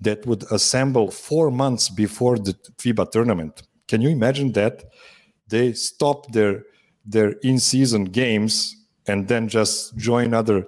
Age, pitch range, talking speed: 50-69, 95-115 Hz, 135 wpm